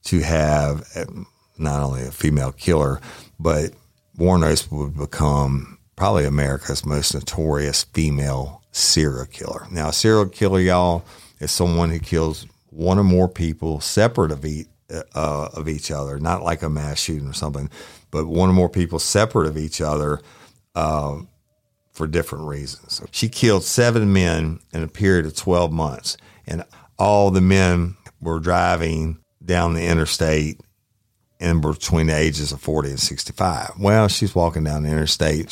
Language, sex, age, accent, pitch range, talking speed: English, male, 50-69, American, 75-90 Hz, 150 wpm